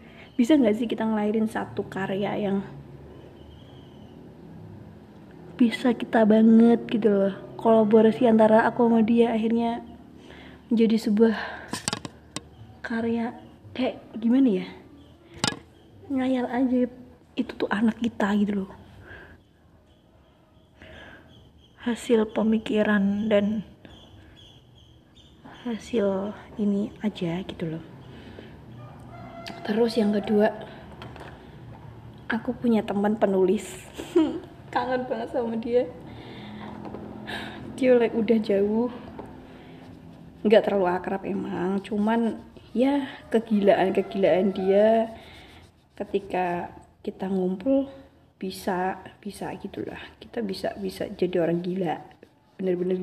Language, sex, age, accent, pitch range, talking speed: Indonesian, female, 20-39, native, 190-235 Hz, 85 wpm